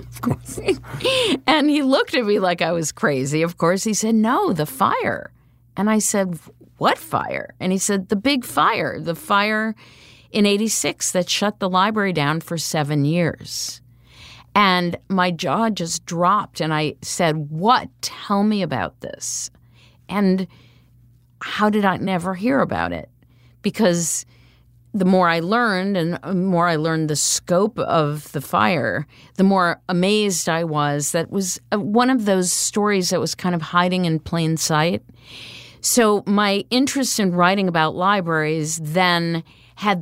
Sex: female